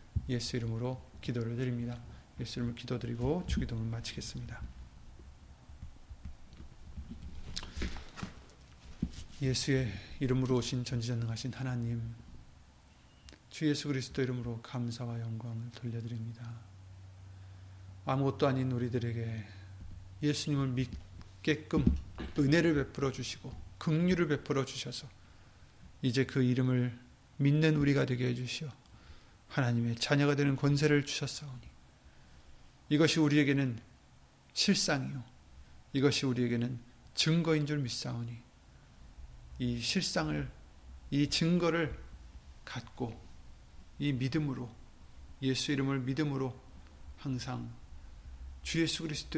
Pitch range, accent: 80-135 Hz, native